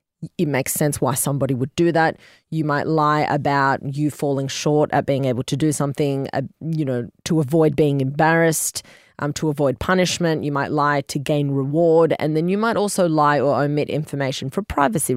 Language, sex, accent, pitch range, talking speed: English, female, Australian, 145-175 Hz, 195 wpm